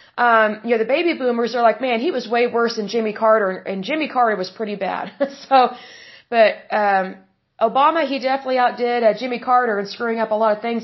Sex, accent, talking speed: female, American, 215 wpm